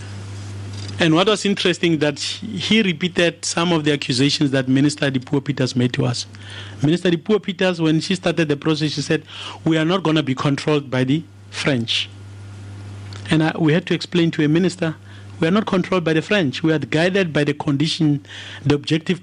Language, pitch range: English, 100-160 Hz